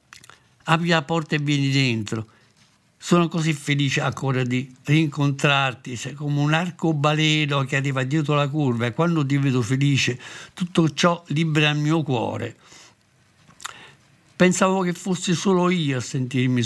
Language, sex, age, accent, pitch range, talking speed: Italian, male, 60-79, native, 130-160 Hz, 140 wpm